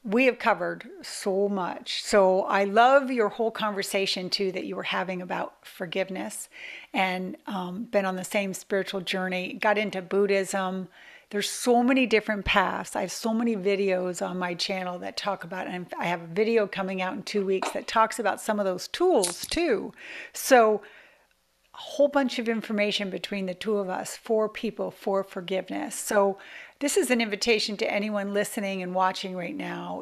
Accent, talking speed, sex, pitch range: American, 180 wpm, female, 190-230 Hz